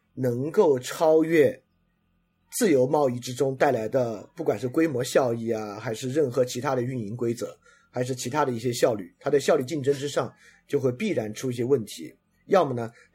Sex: male